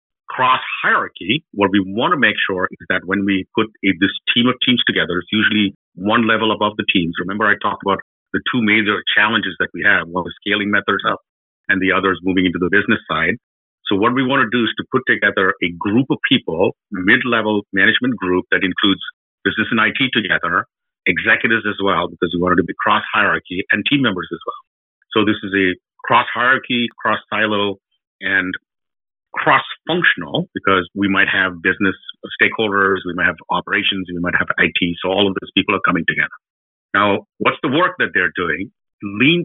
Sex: male